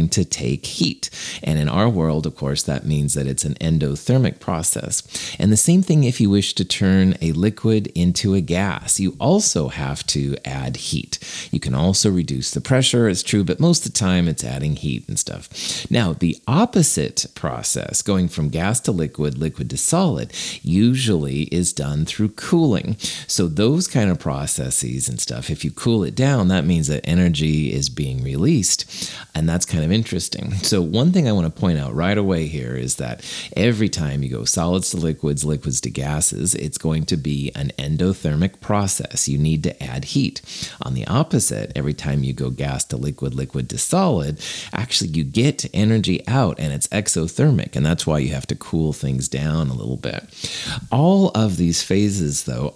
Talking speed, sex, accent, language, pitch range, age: 190 wpm, male, American, English, 75-105 Hz, 30-49